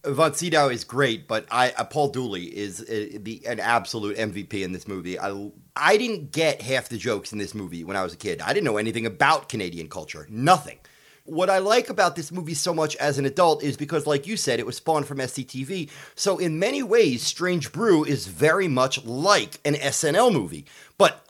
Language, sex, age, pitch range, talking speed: English, male, 30-49, 115-170 Hz, 215 wpm